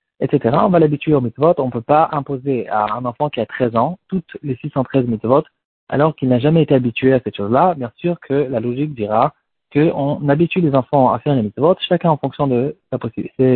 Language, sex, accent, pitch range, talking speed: French, male, French, 125-150 Hz, 230 wpm